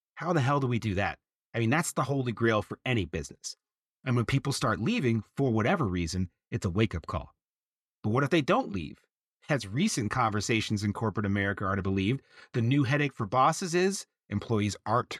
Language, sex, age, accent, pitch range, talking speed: English, male, 30-49, American, 105-135 Hz, 205 wpm